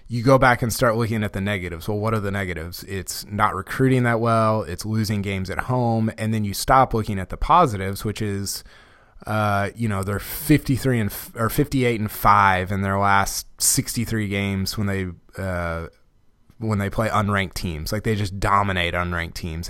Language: English